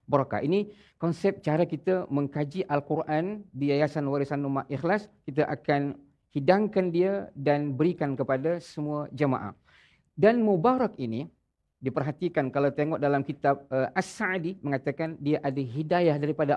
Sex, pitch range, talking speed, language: male, 135-170 Hz, 130 wpm, Malayalam